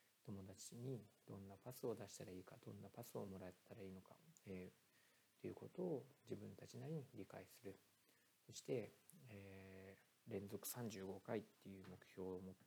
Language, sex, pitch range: Japanese, male, 95-115 Hz